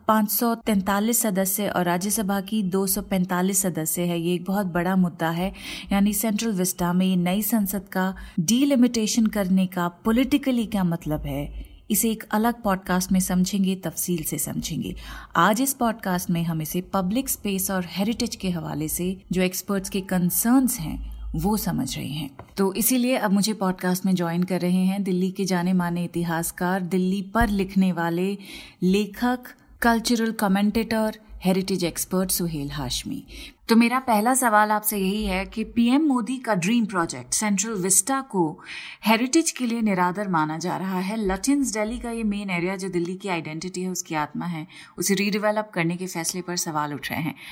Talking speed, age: 170 wpm, 30-49